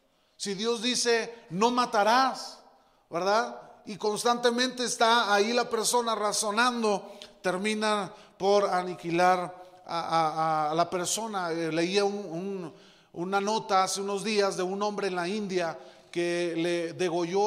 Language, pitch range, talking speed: Spanish, 170-205 Hz, 125 wpm